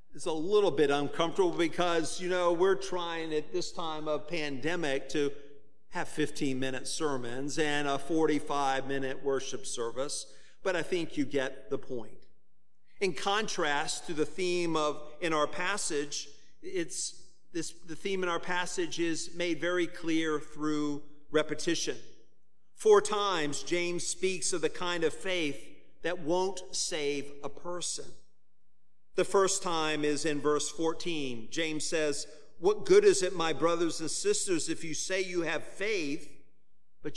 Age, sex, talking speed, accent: 50-69, male, 145 wpm, American